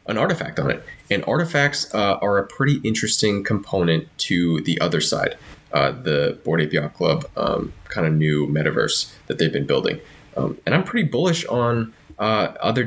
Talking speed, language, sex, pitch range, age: 175 wpm, English, male, 80-115 Hz, 20-39